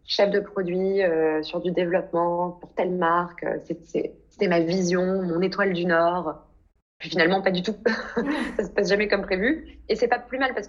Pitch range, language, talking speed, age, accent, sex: 170-205 Hz, Italian, 200 wpm, 20-39, French, female